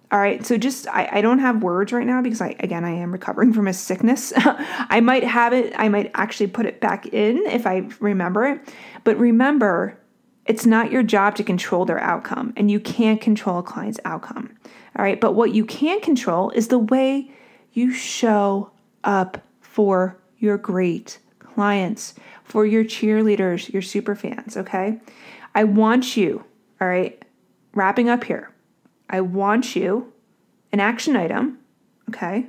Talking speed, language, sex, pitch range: 170 wpm, English, female, 200-240 Hz